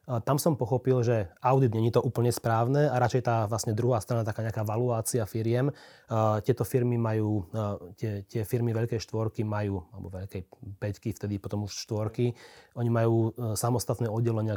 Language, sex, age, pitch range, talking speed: Slovak, male, 30-49, 105-120 Hz, 160 wpm